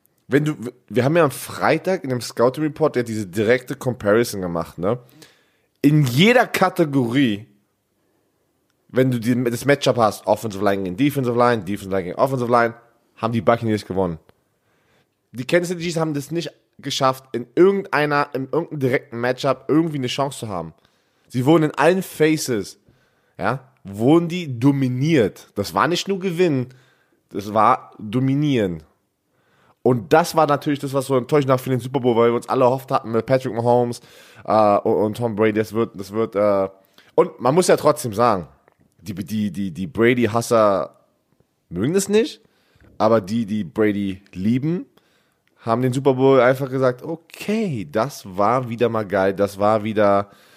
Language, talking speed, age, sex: German, 170 wpm, 20-39, male